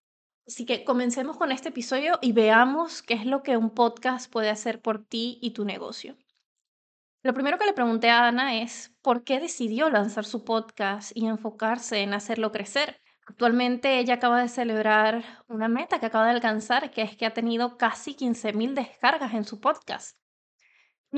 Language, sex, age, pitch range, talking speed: English, female, 20-39, 220-265 Hz, 180 wpm